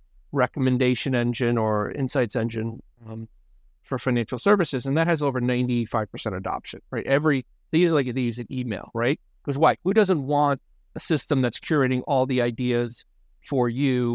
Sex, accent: male, American